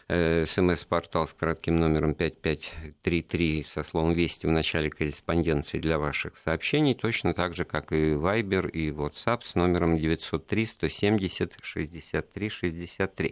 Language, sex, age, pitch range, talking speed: Russian, male, 50-69, 80-105 Hz, 115 wpm